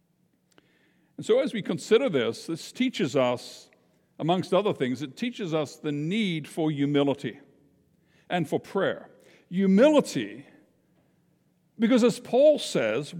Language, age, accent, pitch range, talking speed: English, 60-79, American, 170-220 Hz, 125 wpm